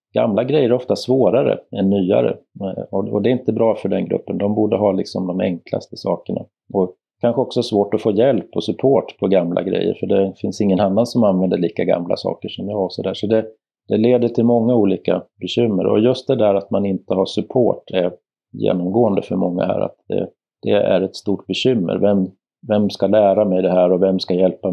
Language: Swedish